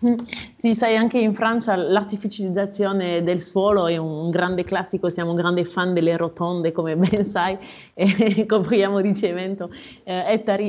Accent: native